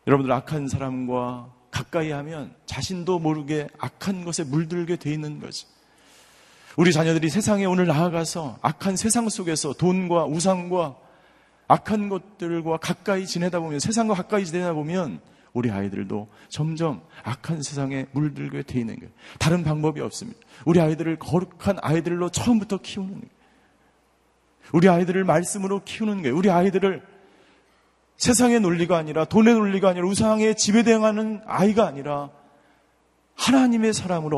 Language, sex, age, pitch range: Korean, male, 40-59, 135-185 Hz